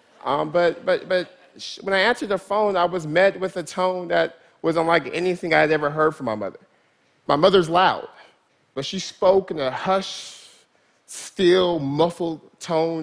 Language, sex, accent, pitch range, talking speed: Spanish, male, American, 145-180 Hz, 180 wpm